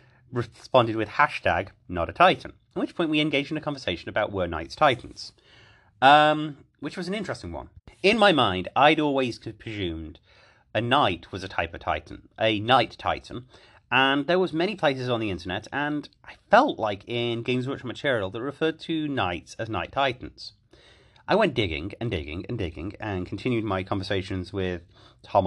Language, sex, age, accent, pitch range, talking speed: English, male, 30-49, British, 100-135 Hz, 180 wpm